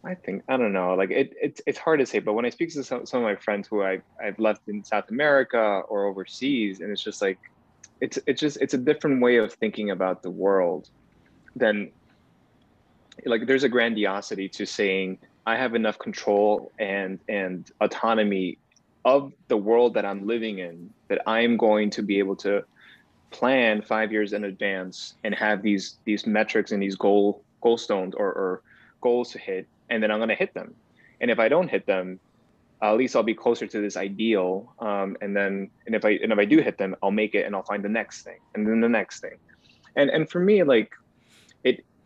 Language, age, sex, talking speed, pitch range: English, 20-39, male, 215 wpm, 100-120 Hz